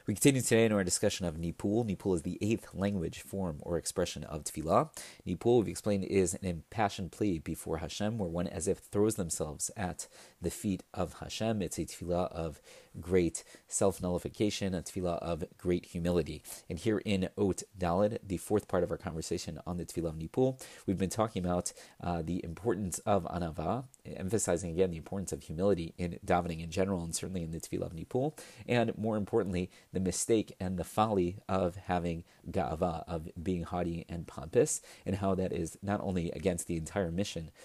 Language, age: English, 30-49